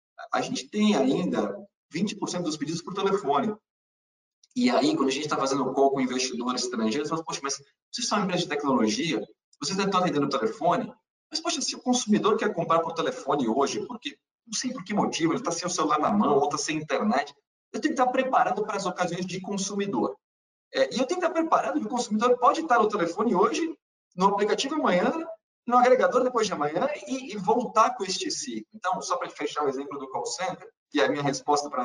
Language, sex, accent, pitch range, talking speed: Portuguese, male, Brazilian, 150-240 Hz, 215 wpm